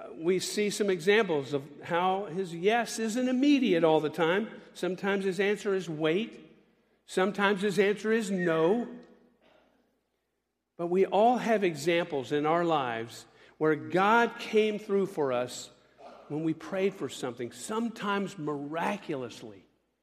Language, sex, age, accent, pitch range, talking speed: English, male, 50-69, American, 150-205 Hz, 130 wpm